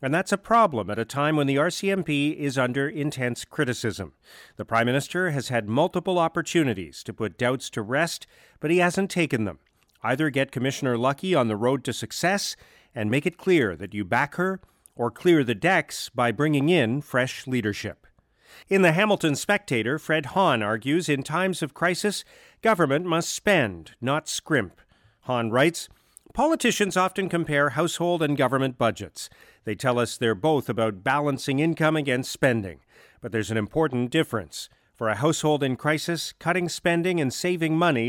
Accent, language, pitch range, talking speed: American, English, 120-165 Hz, 170 wpm